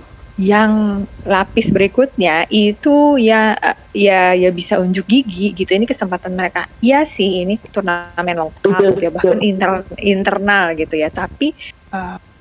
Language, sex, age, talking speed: Indonesian, female, 20-39, 135 wpm